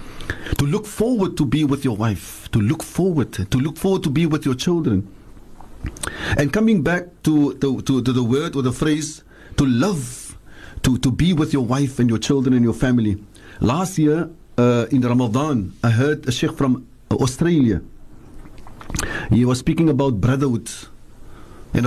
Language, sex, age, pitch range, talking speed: English, male, 50-69, 120-160 Hz, 165 wpm